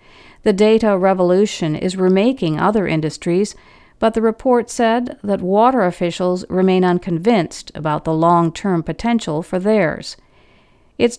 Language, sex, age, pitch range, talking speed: English, female, 50-69, 165-230 Hz, 125 wpm